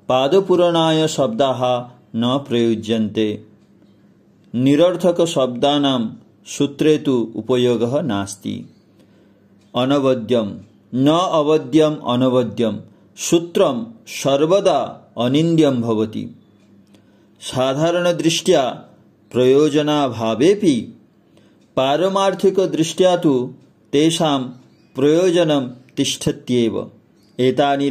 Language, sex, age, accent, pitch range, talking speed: Hindi, male, 40-59, native, 120-155 Hz, 30 wpm